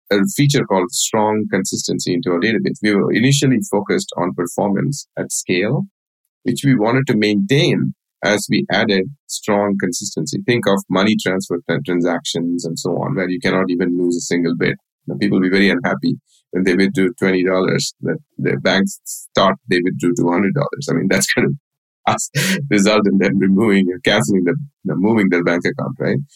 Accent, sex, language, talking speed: Indian, male, English, 180 wpm